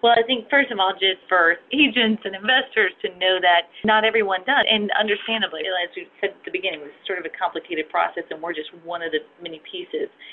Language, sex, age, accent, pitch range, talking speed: English, female, 30-49, American, 170-230 Hz, 230 wpm